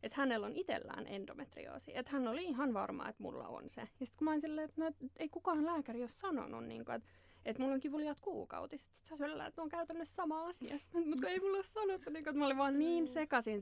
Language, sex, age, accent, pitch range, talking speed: Finnish, female, 20-39, native, 185-285 Hz, 215 wpm